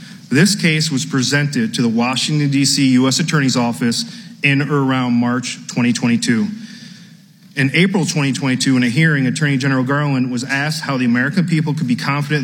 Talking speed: 165 wpm